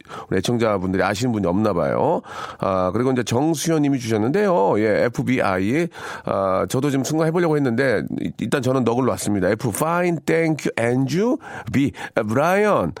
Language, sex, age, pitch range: Korean, male, 40-59, 110-160 Hz